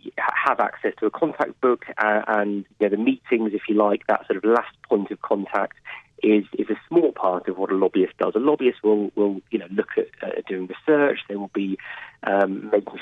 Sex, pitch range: male, 105-125 Hz